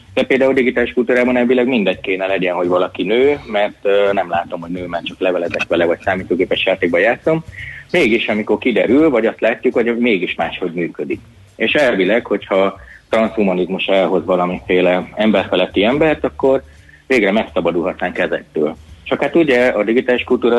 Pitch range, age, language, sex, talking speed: 95-120 Hz, 30-49, Hungarian, male, 155 wpm